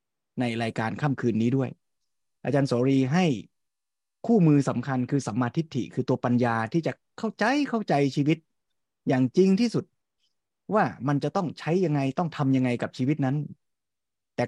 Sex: male